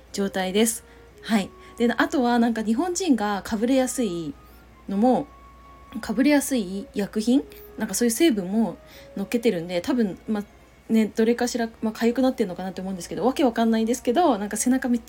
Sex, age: female, 20-39